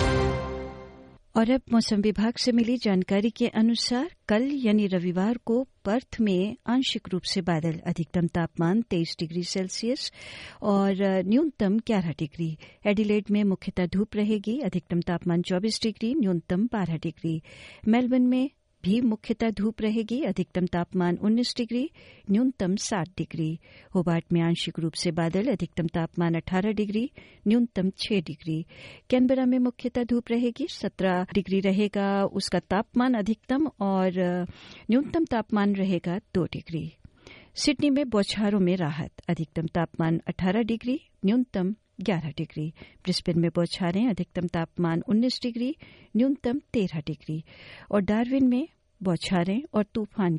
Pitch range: 175-230 Hz